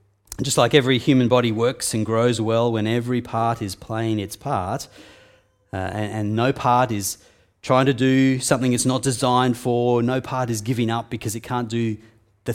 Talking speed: 190 wpm